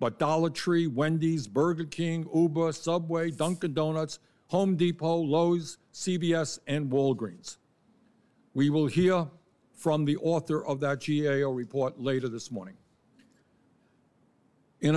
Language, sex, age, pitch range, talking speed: English, male, 60-79, 135-165 Hz, 120 wpm